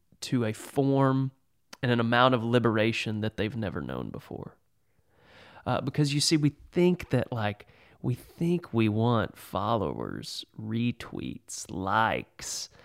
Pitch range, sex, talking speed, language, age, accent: 105-125 Hz, male, 130 wpm, English, 30-49, American